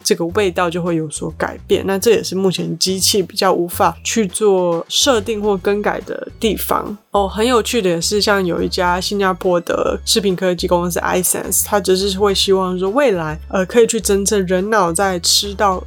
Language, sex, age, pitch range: Chinese, female, 20-39, 175-215 Hz